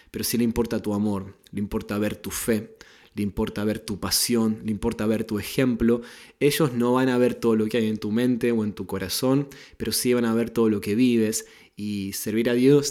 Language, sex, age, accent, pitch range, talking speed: Spanish, male, 20-39, Argentinian, 105-120 Hz, 235 wpm